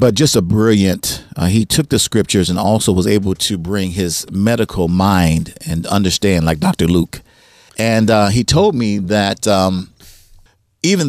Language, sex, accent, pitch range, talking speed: English, male, American, 95-115 Hz, 170 wpm